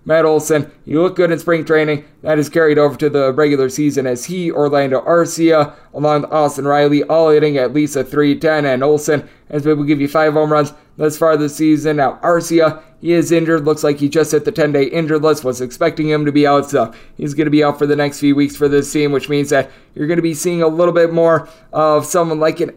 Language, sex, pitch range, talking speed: English, male, 145-155 Hz, 250 wpm